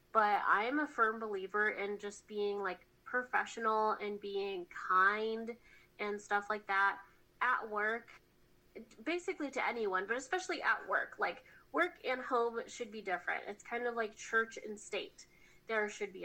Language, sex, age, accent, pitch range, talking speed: English, female, 20-39, American, 205-245 Hz, 160 wpm